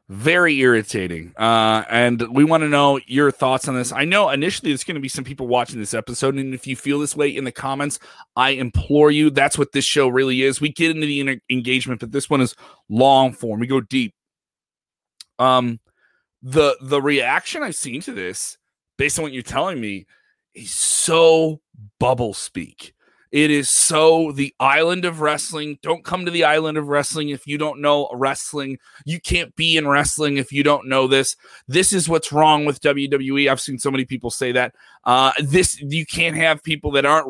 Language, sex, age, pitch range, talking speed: English, male, 30-49, 130-155 Hz, 200 wpm